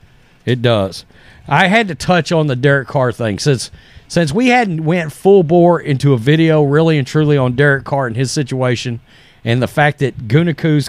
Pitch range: 125-160 Hz